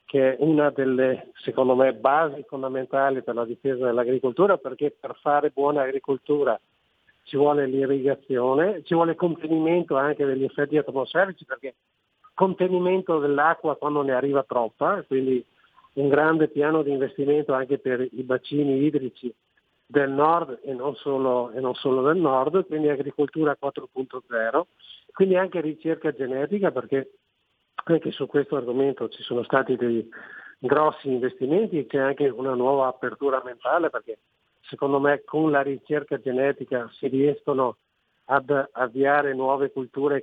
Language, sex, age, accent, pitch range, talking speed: Italian, male, 50-69, native, 130-150 Hz, 135 wpm